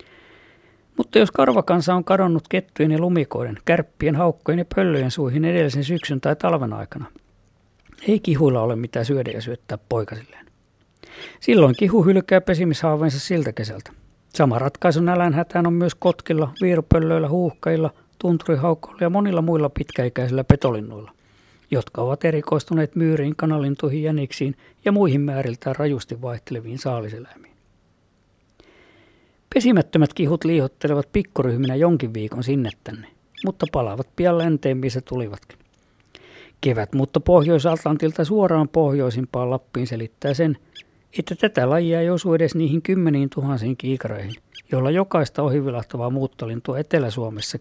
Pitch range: 125-165 Hz